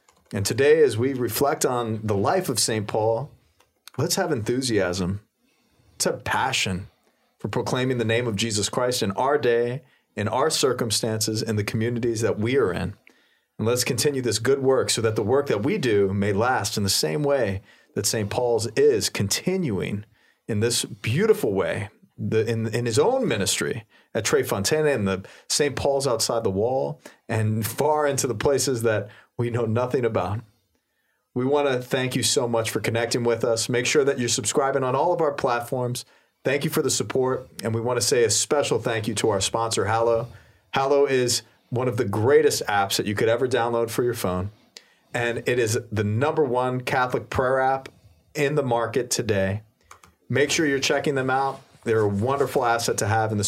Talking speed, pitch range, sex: 195 wpm, 110-135 Hz, male